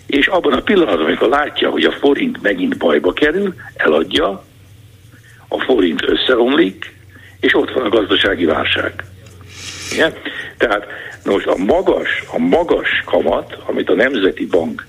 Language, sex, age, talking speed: Hungarian, male, 60-79, 140 wpm